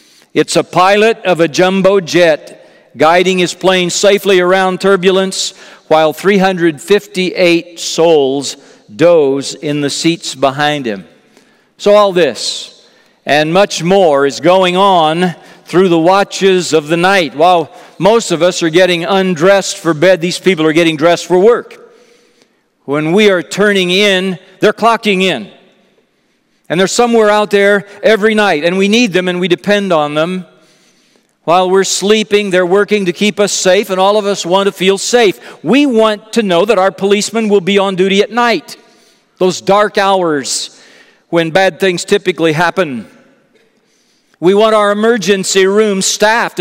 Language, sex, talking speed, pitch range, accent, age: English, male, 155 wpm, 170-205 Hz, American, 50-69